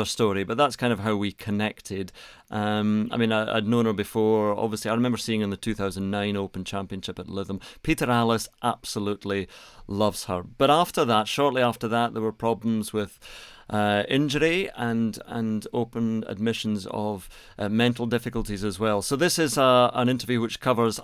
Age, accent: 40-59, British